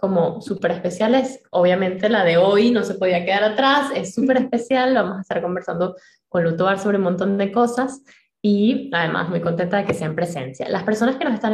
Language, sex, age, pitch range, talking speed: Spanish, female, 10-29, 180-250 Hz, 210 wpm